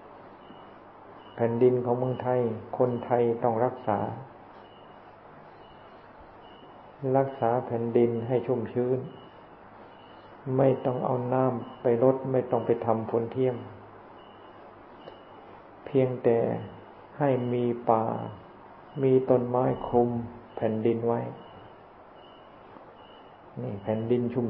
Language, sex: Thai, male